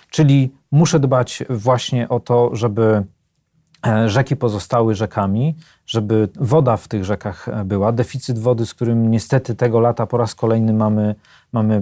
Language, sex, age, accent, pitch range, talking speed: Polish, male, 40-59, native, 110-130 Hz, 140 wpm